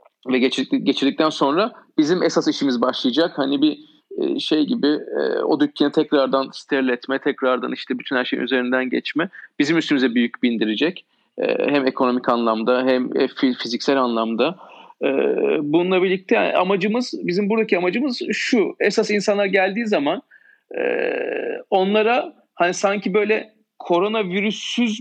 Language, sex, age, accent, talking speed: Turkish, male, 40-59, native, 120 wpm